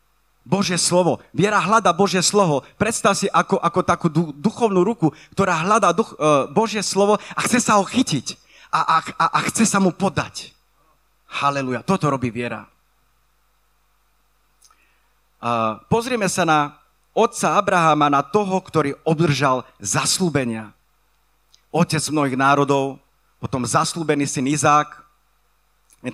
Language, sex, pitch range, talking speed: Slovak, male, 120-180 Hz, 125 wpm